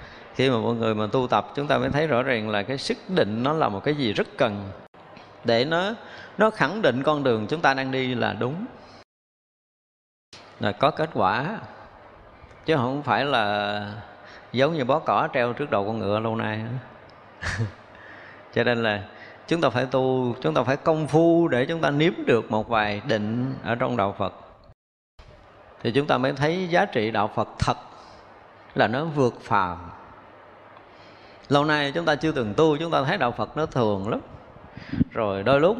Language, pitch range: Vietnamese, 110-155 Hz